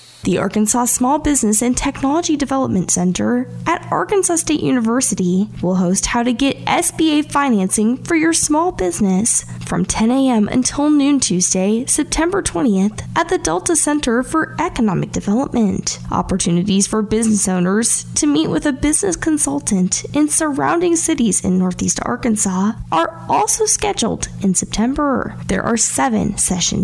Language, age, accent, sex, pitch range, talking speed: English, 10-29, American, female, 200-290 Hz, 140 wpm